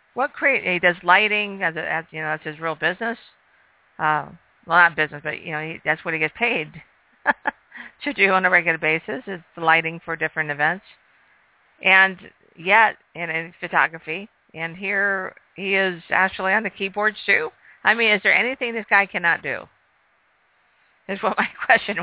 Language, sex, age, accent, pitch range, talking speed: English, female, 50-69, American, 160-195 Hz, 175 wpm